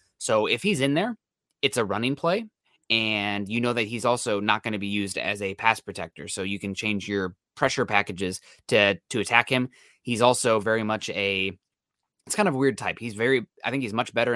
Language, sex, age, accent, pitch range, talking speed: English, male, 20-39, American, 105-125 Hz, 230 wpm